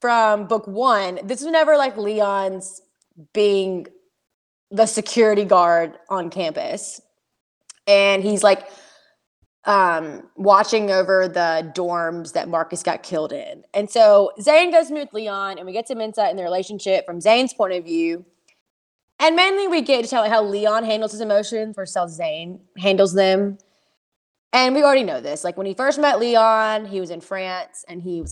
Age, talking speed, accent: 20-39, 175 wpm, American